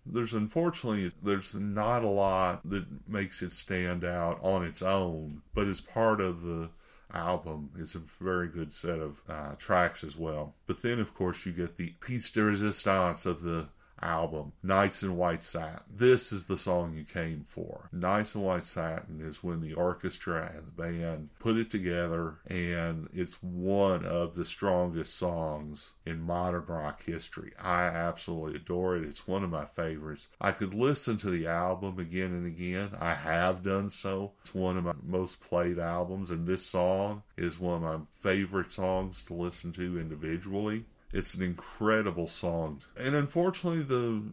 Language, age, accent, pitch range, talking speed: English, 50-69, American, 85-105 Hz, 175 wpm